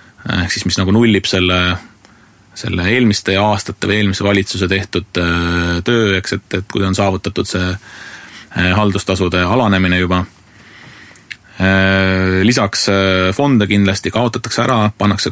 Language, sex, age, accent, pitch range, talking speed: English, male, 30-49, Finnish, 95-110 Hz, 120 wpm